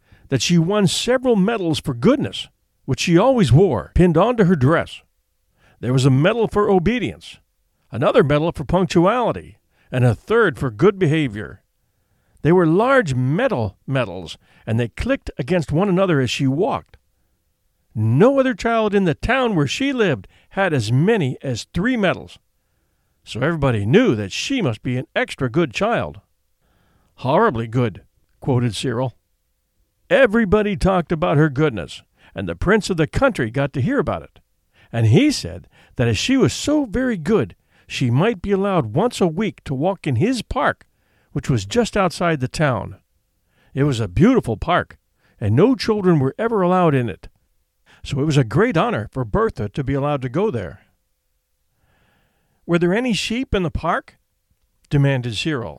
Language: English